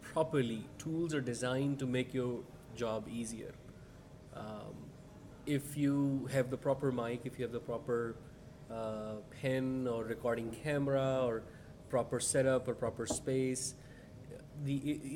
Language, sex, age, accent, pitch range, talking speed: English, male, 30-49, Indian, 120-145 Hz, 135 wpm